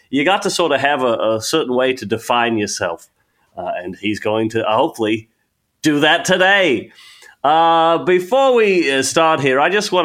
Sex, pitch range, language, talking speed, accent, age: male, 115-160 Hz, English, 180 wpm, American, 40-59